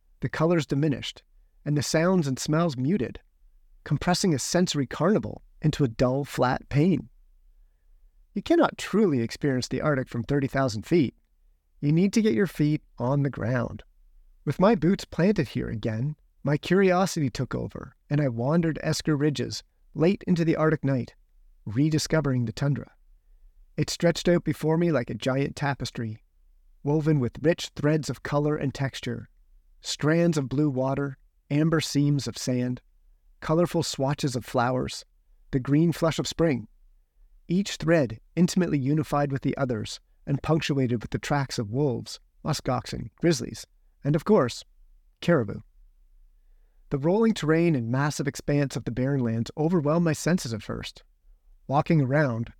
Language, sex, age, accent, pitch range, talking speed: English, male, 30-49, American, 115-155 Hz, 145 wpm